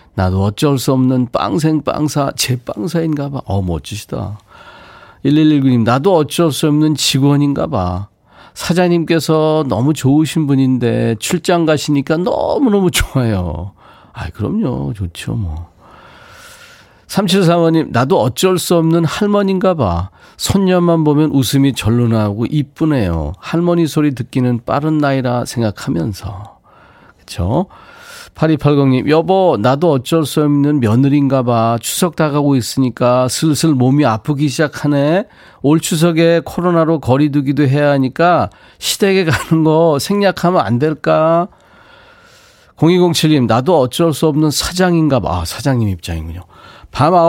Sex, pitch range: male, 125-160 Hz